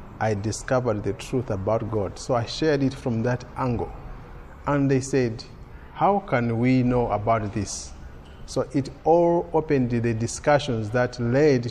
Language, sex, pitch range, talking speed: English, male, 110-135 Hz, 155 wpm